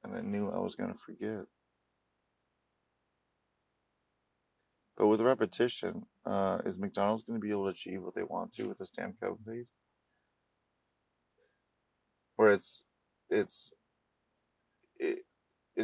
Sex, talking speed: male, 115 wpm